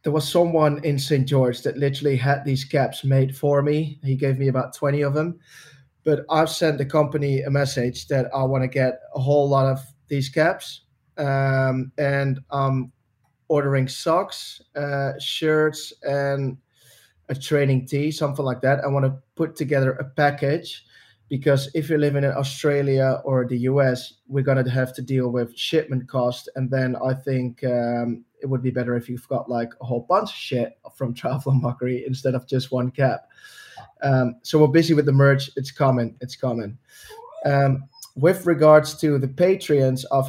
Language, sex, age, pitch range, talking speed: English, male, 20-39, 130-145 Hz, 185 wpm